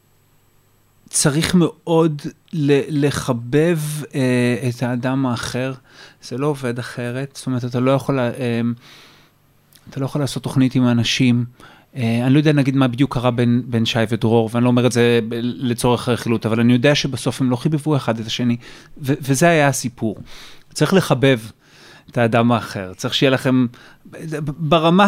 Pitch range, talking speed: 120-145 Hz, 155 wpm